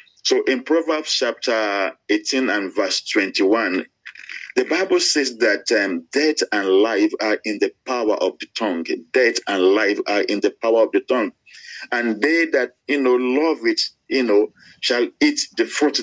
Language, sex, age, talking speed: English, male, 50-69, 170 wpm